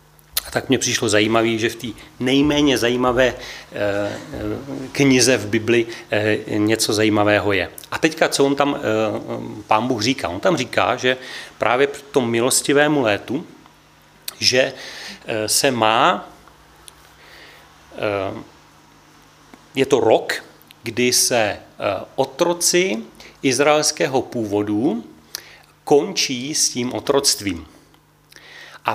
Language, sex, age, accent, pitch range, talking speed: Czech, male, 40-59, native, 115-140 Hz, 100 wpm